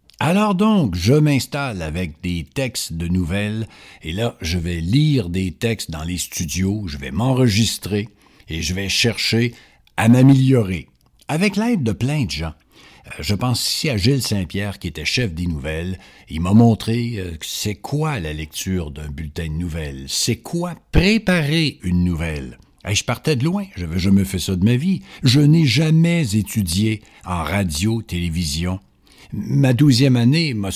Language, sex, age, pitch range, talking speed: French, male, 60-79, 85-135 Hz, 170 wpm